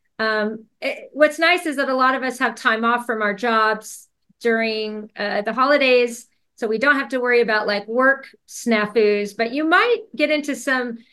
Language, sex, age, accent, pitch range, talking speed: English, female, 40-59, American, 220-270 Hz, 195 wpm